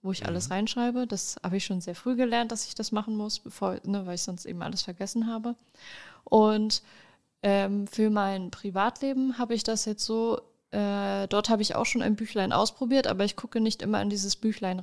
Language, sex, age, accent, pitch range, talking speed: German, female, 20-39, German, 195-225 Hz, 210 wpm